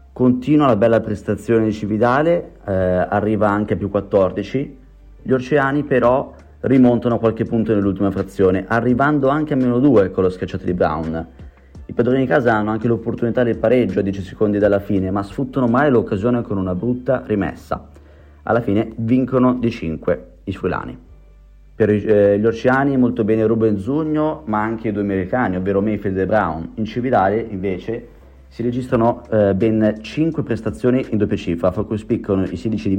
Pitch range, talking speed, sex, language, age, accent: 95-120 Hz, 170 wpm, male, Italian, 30-49, native